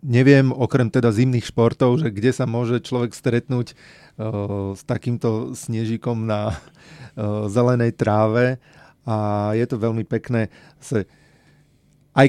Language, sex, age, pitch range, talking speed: Slovak, male, 30-49, 115-130 Hz, 110 wpm